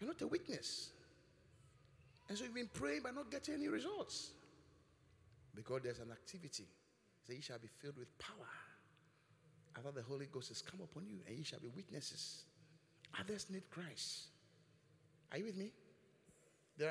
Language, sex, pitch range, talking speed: English, male, 140-230 Hz, 165 wpm